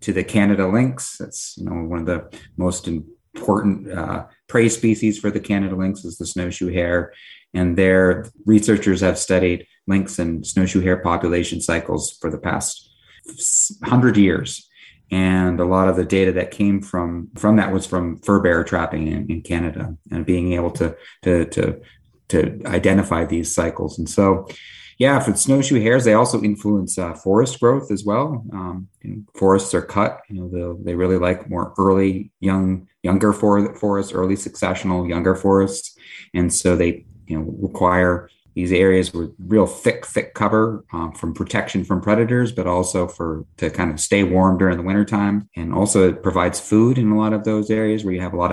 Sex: male